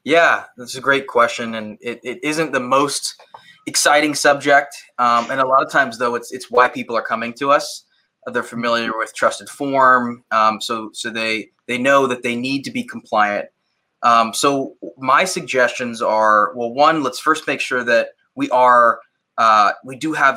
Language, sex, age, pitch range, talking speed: English, male, 20-39, 115-140 Hz, 185 wpm